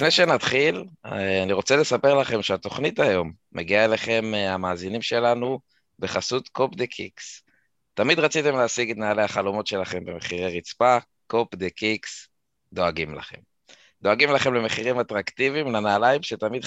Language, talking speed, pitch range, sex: Hebrew, 130 wpm, 95-115 Hz, male